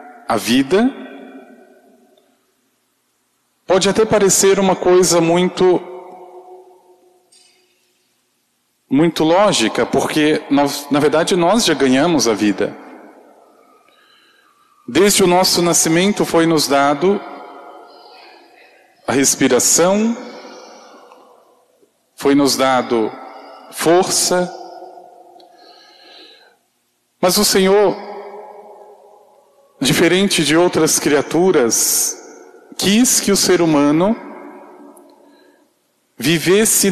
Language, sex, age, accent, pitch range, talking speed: Portuguese, male, 40-59, Brazilian, 155-235 Hz, 75 wpm